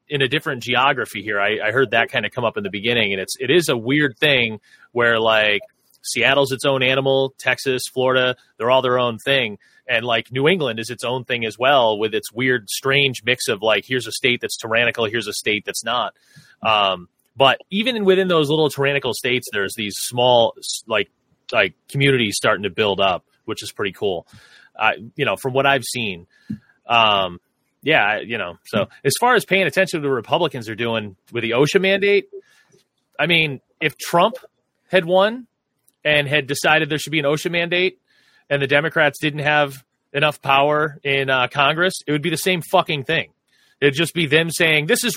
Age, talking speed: 30-49, 200 wpm